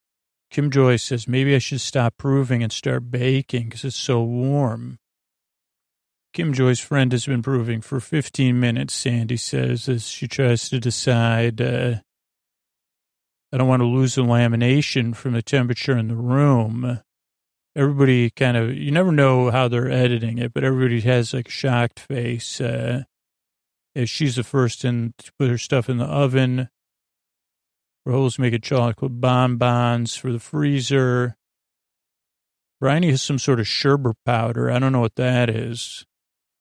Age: 40-59